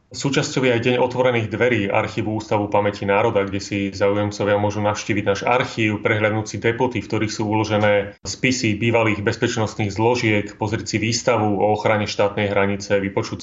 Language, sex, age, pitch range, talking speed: Slovak, male, 30-49, 100-115 Hz, 155 wpm